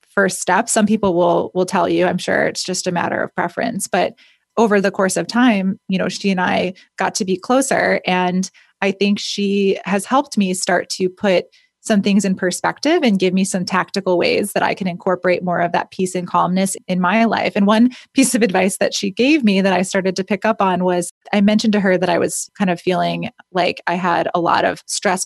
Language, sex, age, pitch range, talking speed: English, female, 20-39, 185-220 Hz, 235 wpm